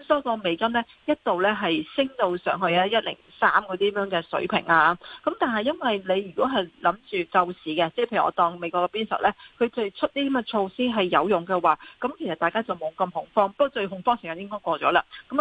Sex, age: female, 40-59